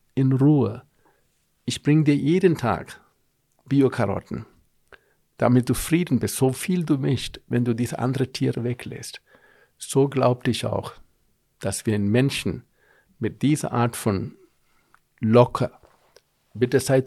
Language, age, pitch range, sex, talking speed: German, 50-69, 110-135 Hz, male, 130 wpm